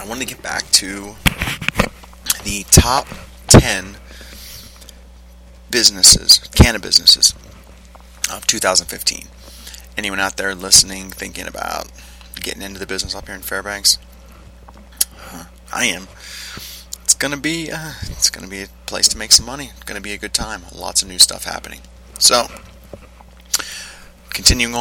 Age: 30-49